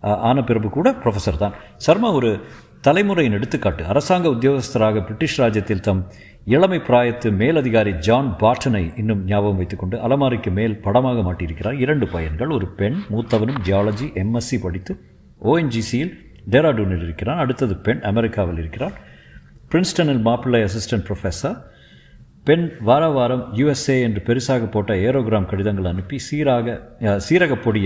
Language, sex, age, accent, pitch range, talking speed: Tamil, male, 50-69, native, 95-125 Hz, 125 wpm